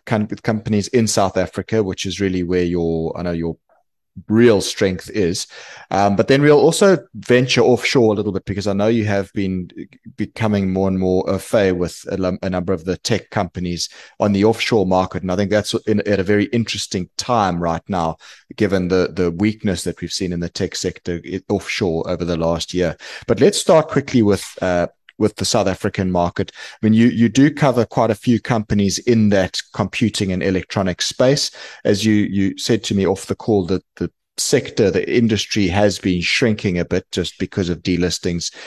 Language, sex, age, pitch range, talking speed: English, male, 30-49, 90-105 Hz, 195 wpm